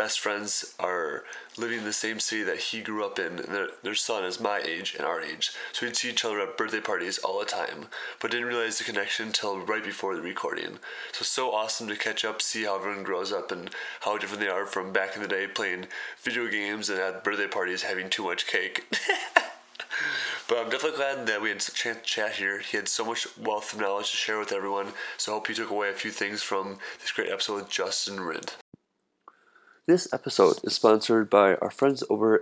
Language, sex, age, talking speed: English, male, 20-39, 230 wpm